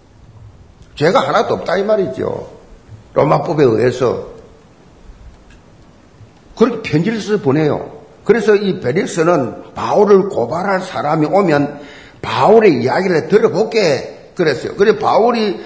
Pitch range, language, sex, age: 150-220 Hz, Korean, male, 50-69